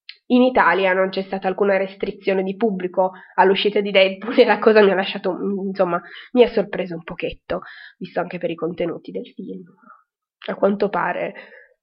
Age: 20-39